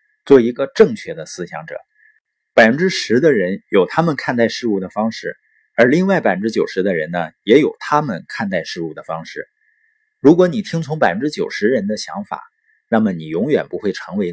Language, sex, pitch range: Chinese, male, 115-180 Hz